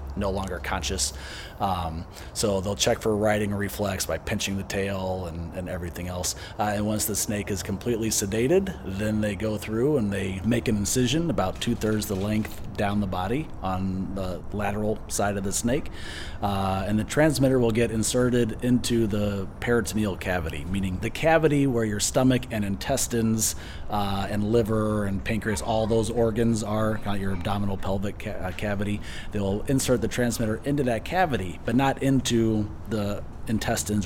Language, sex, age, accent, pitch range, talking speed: English, male, 30-49, American, 95-115 Hz, 165 wpm